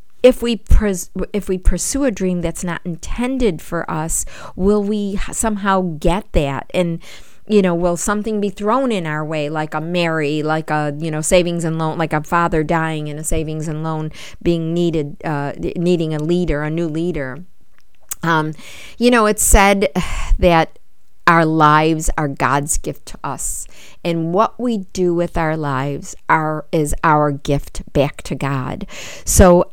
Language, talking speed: English, 170 wpm